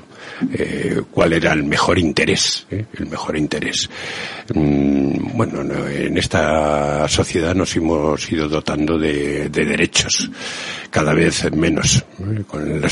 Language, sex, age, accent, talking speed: Spanish, male, 60-79, Spanish, 115 wpm